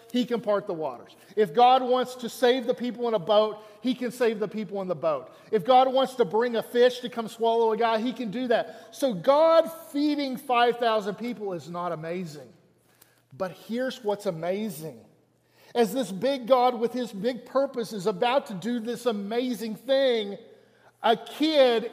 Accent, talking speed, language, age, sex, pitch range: American, 185 wpm, English, 40-59, male, 210-260 Hz